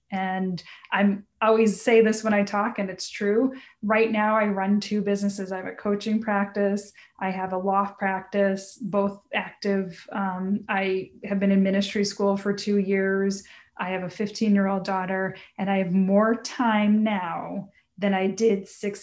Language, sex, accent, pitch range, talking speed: English, female, American, 190-210 Hz, 175 wpm